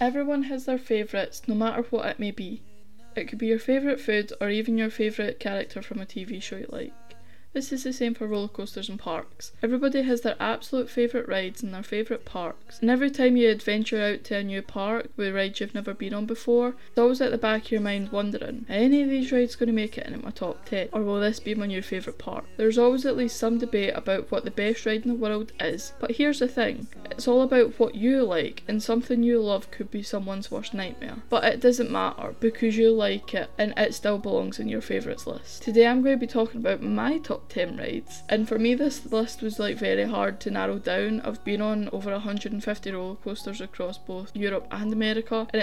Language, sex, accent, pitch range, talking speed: English, female, British, 210-245 Hz, 235 wpm